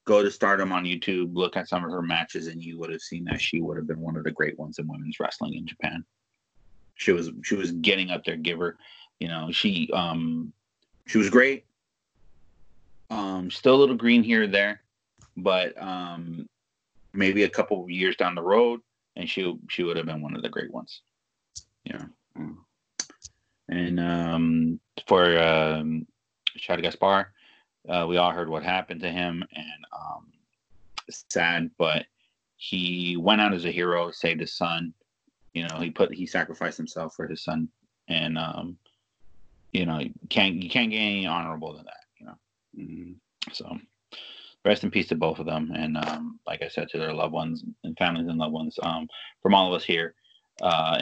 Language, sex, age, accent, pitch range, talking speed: English, male, 30-49, American, 80-105 Hz, 185 wpm